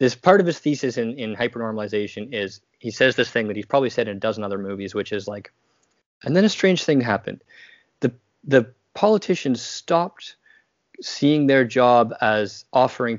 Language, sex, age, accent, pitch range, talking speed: English, male, 20-39, American, 105-130 Hz, 185 wpm